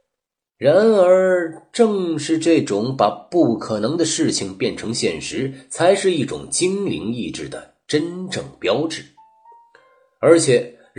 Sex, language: male, Chinese